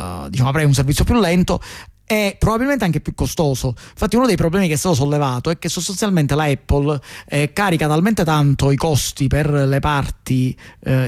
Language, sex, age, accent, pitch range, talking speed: Italian, male, 30-49, native, 130-160 Hz, 185 wpm